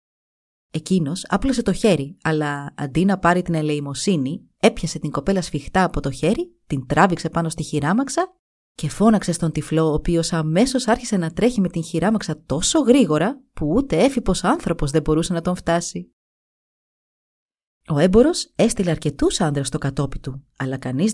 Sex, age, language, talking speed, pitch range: female, 30-49, Greek, 160 wpm, 155-225 Hz